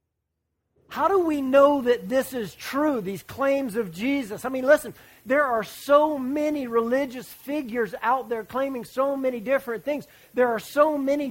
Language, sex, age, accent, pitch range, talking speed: English, male, 40-59, American, 205-275 Hz, 170 wpm